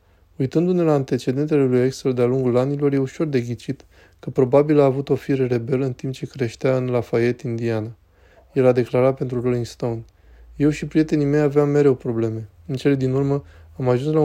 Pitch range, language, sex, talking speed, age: 115-135 Hz, Romanian, male, 195 wpm, 20-39